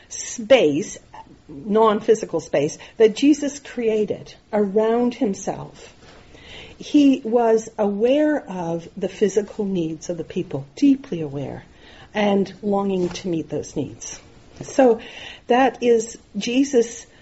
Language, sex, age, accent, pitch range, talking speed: English, female, 50-69, American, 190-260 Hz, 105 wpm